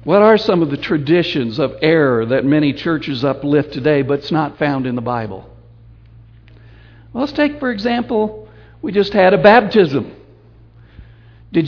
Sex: male